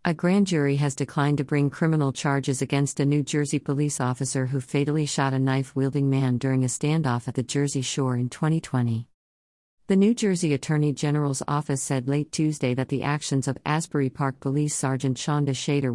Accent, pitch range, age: American, 130-150 Hz, 50-69